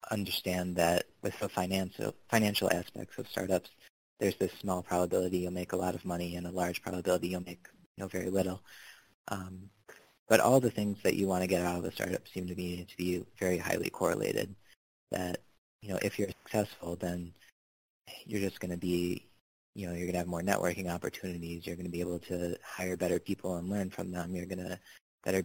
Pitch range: 90-95 Hz